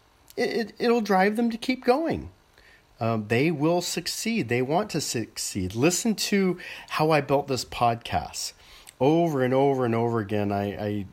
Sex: male